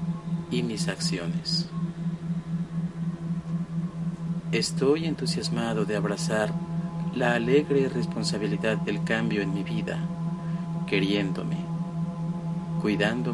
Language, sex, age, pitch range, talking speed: Spanish, male, 40-59, 165-170 Hz, 75 wpm